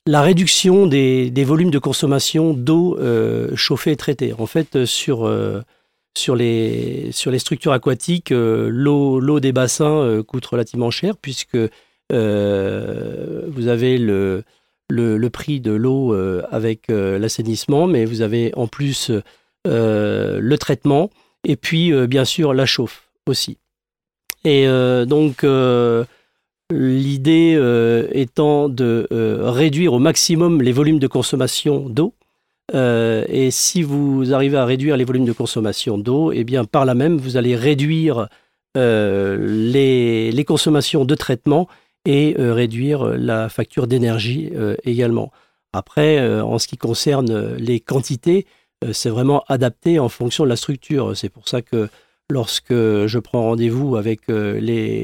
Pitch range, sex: 115-145 Hz, male